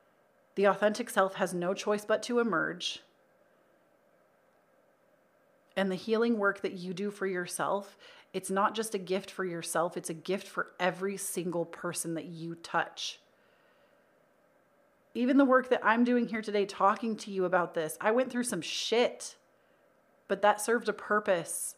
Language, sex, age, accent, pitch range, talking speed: English, female, 30-49, American, 180-210 Hz, 160 wpm